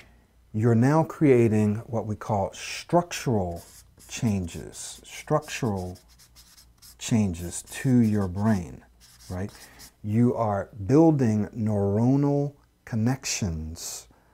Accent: American